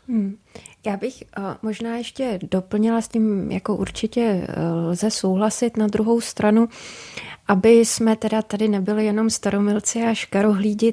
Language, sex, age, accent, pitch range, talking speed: Czech, female, 20-39, native, 190-220 Hz, 125 wpm